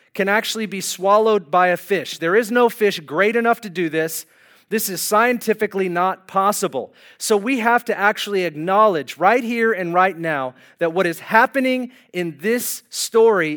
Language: English